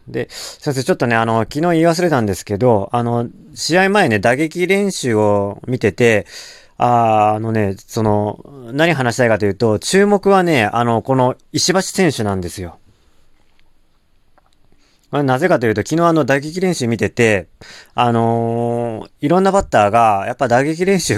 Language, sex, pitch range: Japanese, male, 110-155 Hz